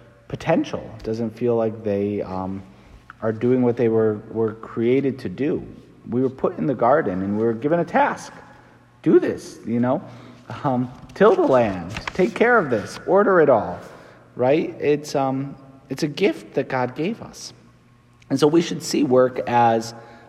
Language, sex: English, male